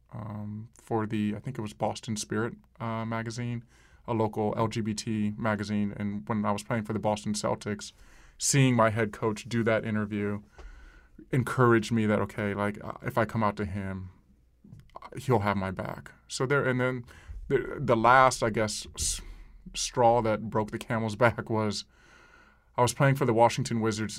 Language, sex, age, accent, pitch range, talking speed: English, male, 20-39, American, 100-110 Hz, 175 wpm